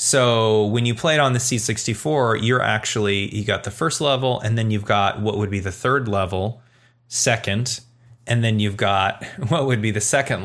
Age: 20-39